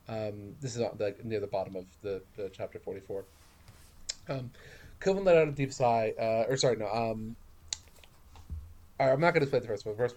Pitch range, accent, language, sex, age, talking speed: 105-150 Hz, American, English, male, 30-49, 205 wpm